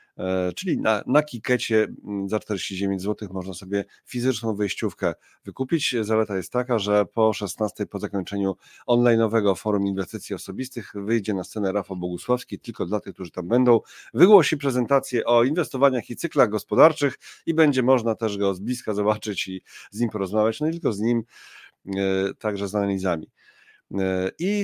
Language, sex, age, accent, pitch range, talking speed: Polish, male, 40-59, native, 95-120 Hz, 155 wpm